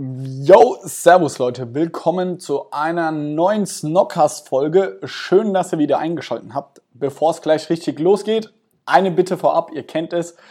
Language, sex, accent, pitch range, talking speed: German, male, German, 145-175 Hz, 145 wpm